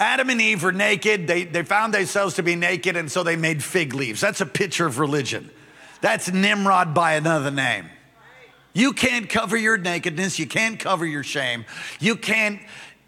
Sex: male